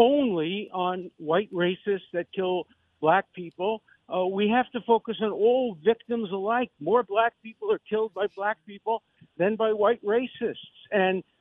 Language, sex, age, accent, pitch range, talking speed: English, male, 50-69, American, 190-235 Hz, 160 wpm